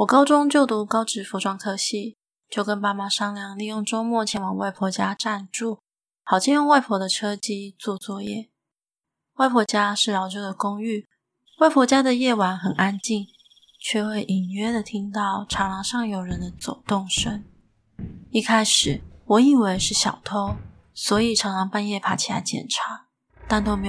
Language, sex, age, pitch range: Chinese, female, 20-39, 195-230 Hz